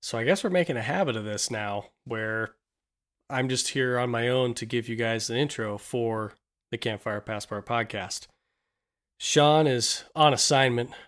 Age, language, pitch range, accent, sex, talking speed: 30-49, English, 110-130 Hz, American, male, 175 wpm